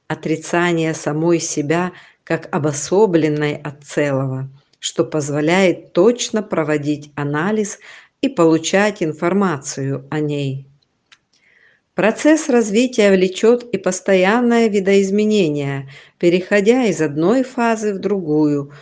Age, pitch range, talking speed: 50-69, 150-200 Hz, 90 wpm